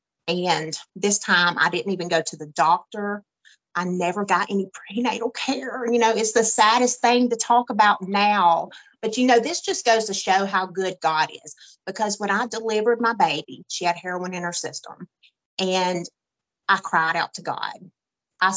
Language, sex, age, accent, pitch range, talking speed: English, female, 30-49, American, 175-225 Hz, 185 wpm